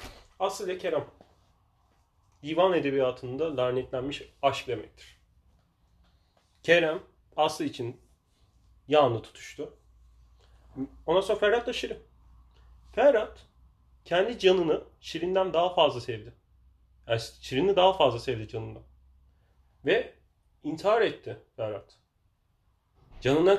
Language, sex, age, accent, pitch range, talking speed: Turkish, male, 30-49, native, 95-140 Hz, 90 wpm